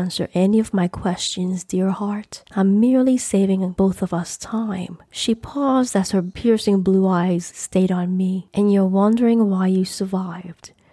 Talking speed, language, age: 165 wpm, English, 30-49